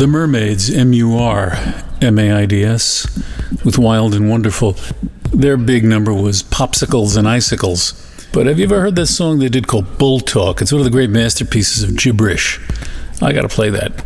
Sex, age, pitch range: male, 50-69, 105-125 Hz